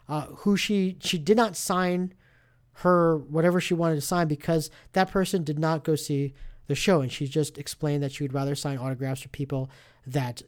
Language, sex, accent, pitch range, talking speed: English, male, American, 135-185 Hz, 200 wpm